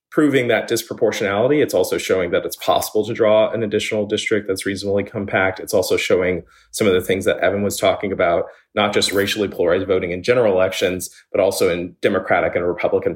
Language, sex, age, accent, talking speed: English, male, 30-49, American, 195 wpm